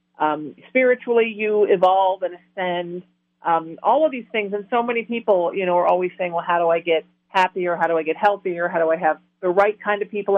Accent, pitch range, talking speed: American, 165-205 Hz, 230 wpm